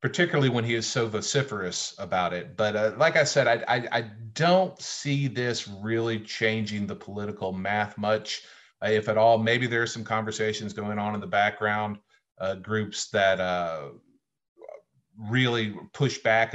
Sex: male